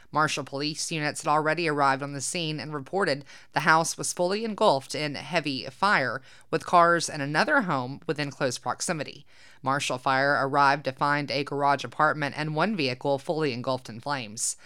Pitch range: 135-155 Hz